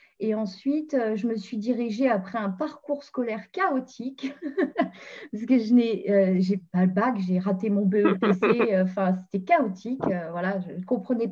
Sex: female